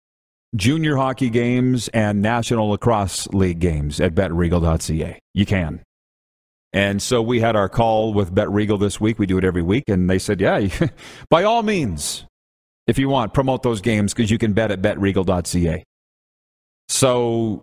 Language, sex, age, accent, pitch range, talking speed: English, male, 40-59, American, 95-120 Hz, 160 wpm